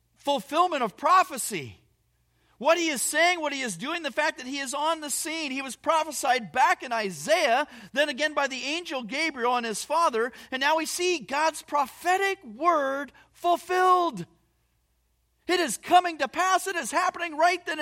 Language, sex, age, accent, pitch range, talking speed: English, male, 40-59, American, 210-310 Hz, 175 wpm